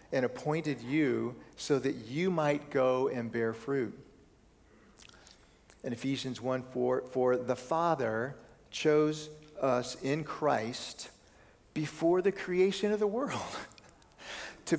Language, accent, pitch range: English, American, 125-170 Hz